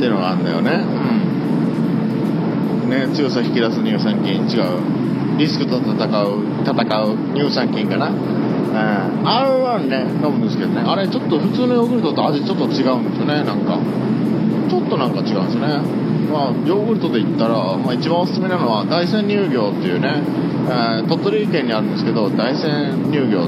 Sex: male